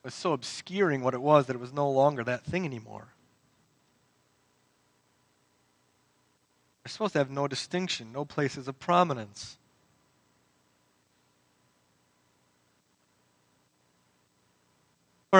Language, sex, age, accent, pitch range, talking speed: English, male, 30-49, American, 110-155 Hz, 95 wpm